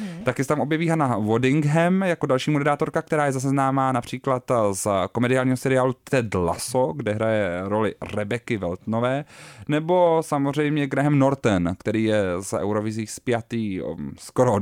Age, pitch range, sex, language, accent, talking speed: 30-49, 105-135 Hz, male, Czech, native, 140 wpm